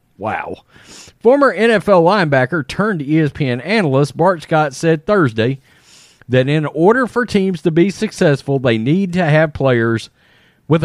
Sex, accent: male, American